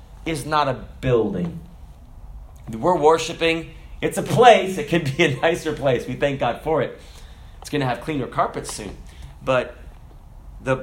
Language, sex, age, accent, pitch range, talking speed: English, male, 30-49, American, 115-150 Hz, 160 wpm